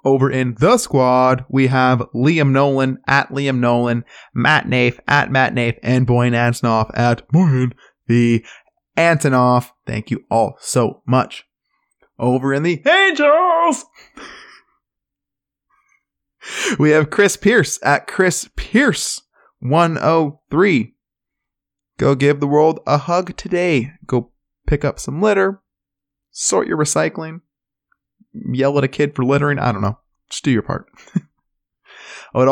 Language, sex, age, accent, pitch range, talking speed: English, male, 20-39, American, 130-195 Hz, 130 wpm